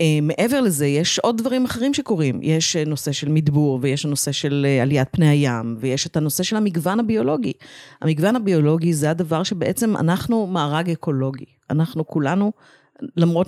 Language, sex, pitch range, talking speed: Hebrew, female, 140-180 Hz, 150 wpm